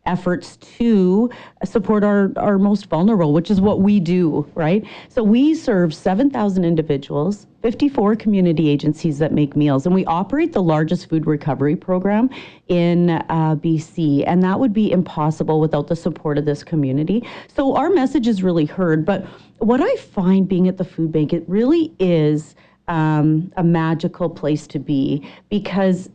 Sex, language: female, English